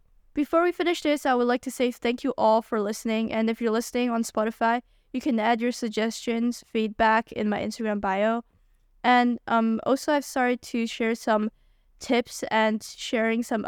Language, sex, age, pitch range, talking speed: English, female, 10-29, 215-245 Hz, 185 wpm